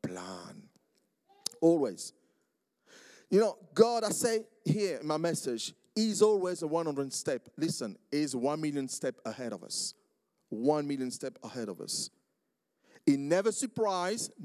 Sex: male